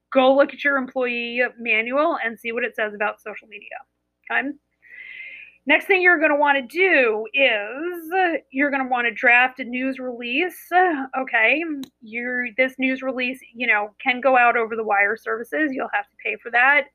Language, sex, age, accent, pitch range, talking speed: English, female, 30-49, American, 230-295 Hz, 190 wpm